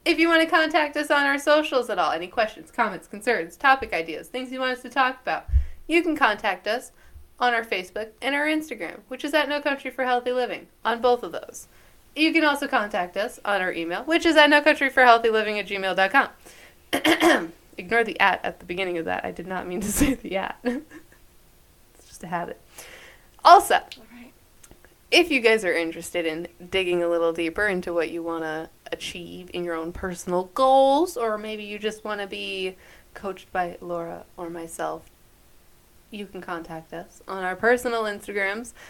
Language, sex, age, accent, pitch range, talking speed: English, female, 20-39, American, 180-265 Hz, 195 wpm